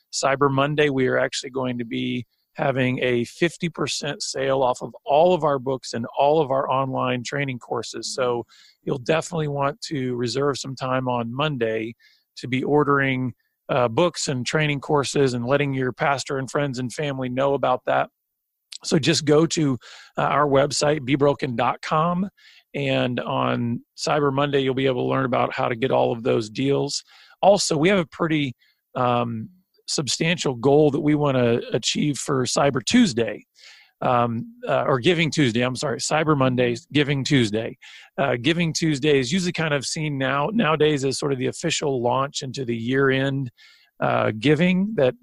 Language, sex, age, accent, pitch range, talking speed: English, male, 40-59, American, 125-155 Hz, 170 wpm